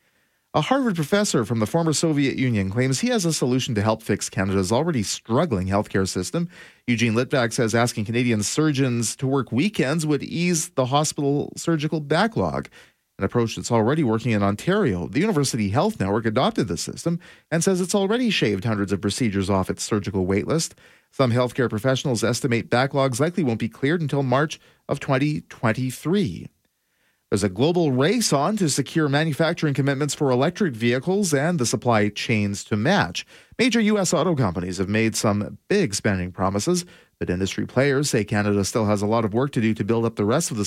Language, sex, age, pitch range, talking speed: English, male, 40-59, 110-155 Hz, 185 wpm